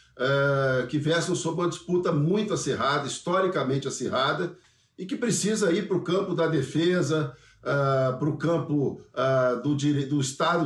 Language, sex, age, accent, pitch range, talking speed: Portuguese, male, 50-69, Brazilian, 135-165 Hz, 130 wpm